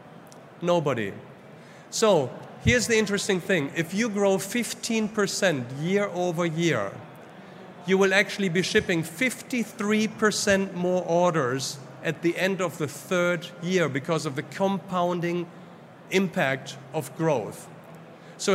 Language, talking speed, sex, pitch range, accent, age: English, 115 wpm, male, 155-190 Hz, German, 50-69